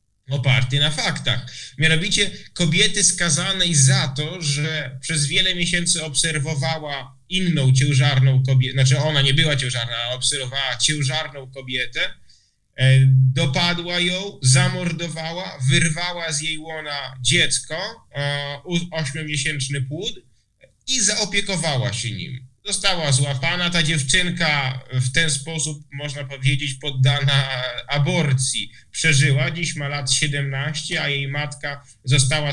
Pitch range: 135-160 Hz